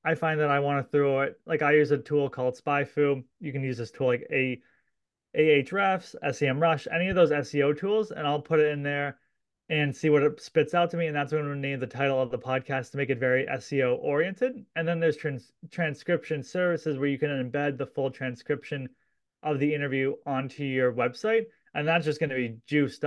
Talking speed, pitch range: 220 wpm, 135-160 Hz